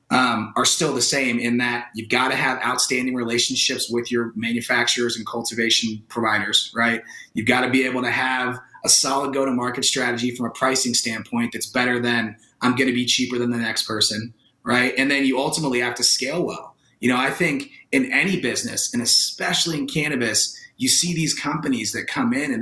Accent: American